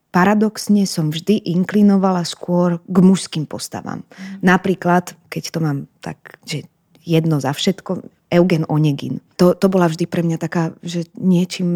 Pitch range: 165-190 Hz